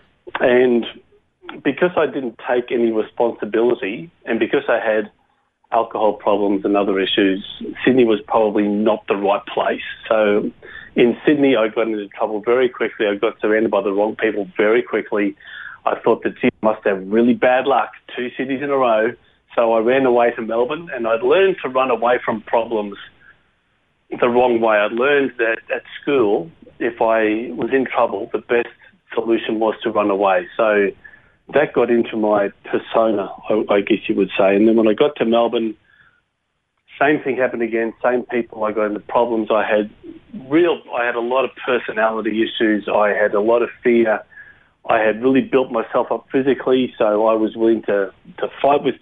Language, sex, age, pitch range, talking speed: English, male, 40-59, 105-125 Hz, 185 wpm